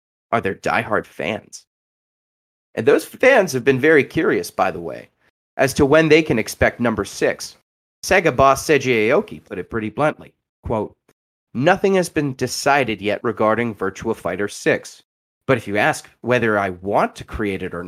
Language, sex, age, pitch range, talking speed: English, male, 30-49, 105-155 Hz, 170 wpm